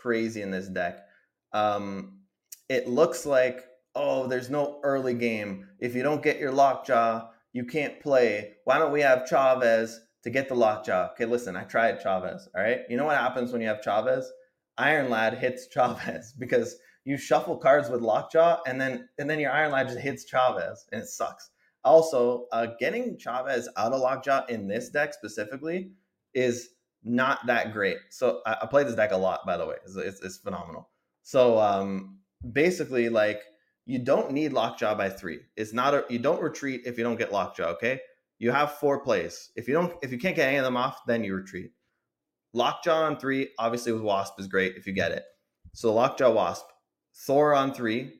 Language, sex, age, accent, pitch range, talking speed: English, male, 20-39, American, 105-140 Hz, 195 wpm